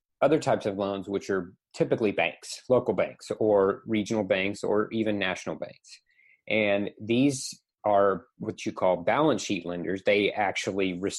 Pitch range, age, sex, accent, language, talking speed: 100-115 Hz, 30-49, male, American, English, 150 wpm